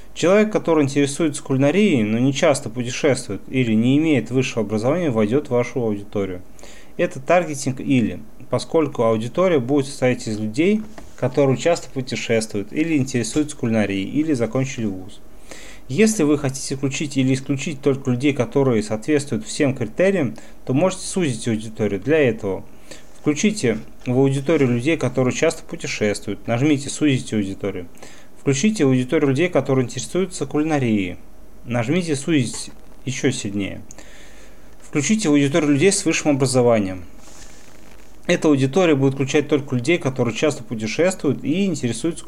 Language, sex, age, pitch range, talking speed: Russian, male, 30-49, 110-150 Hz, 130 wpm